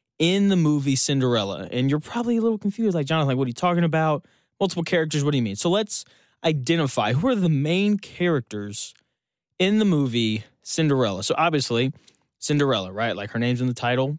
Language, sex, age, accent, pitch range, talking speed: English, male, 20-39, American, 130-175 Hz, 190 wpm